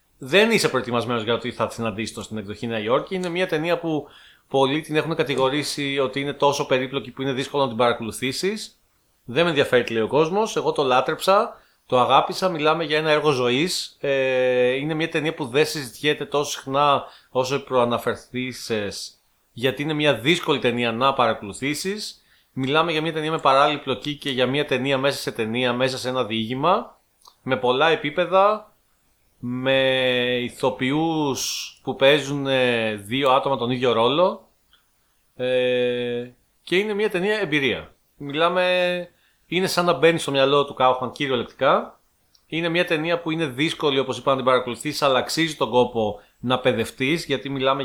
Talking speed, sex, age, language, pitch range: 160 wpm, male, 30-49, Greek, 125-160 Hz